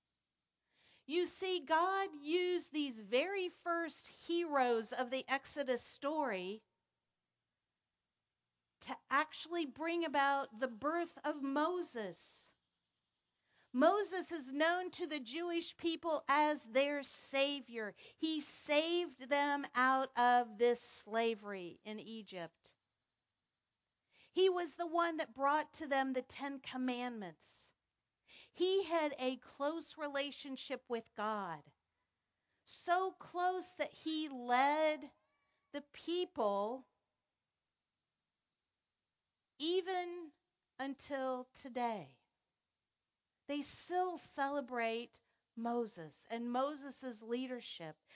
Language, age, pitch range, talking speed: English, 50-69, 235-315 Hz, 90 wpm